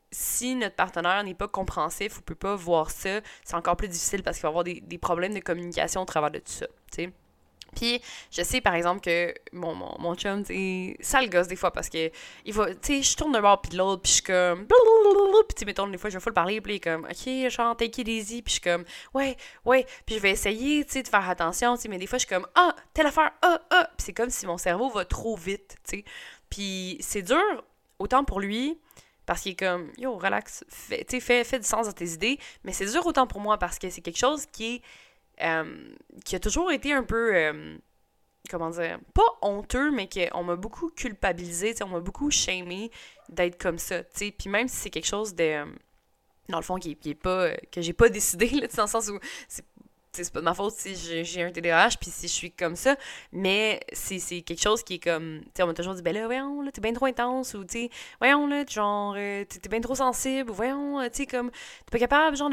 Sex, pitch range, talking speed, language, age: female, 180-260 Hz, 240 wpm, French, 20-39